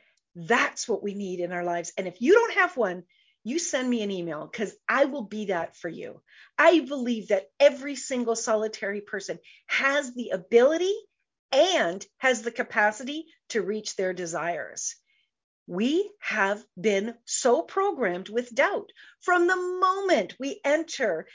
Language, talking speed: English, 155 wpm